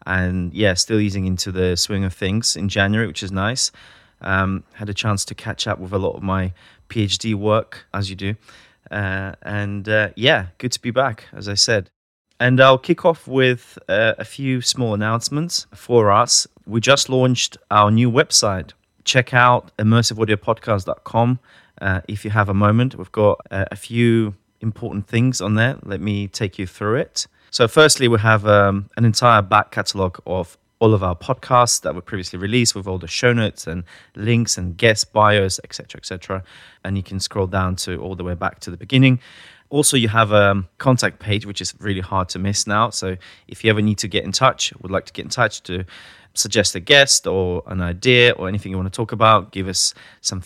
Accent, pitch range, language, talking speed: British, 95-115 Hz, English, 205 wpm